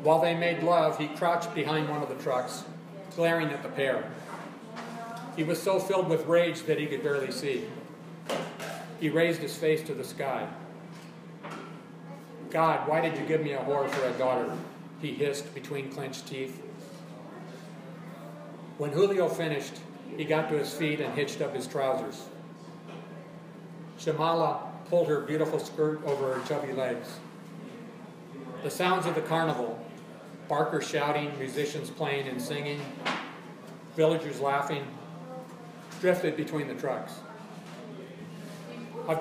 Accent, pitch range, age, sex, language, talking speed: American, 145-175 Hz, 40-59, male, English, 135 wpm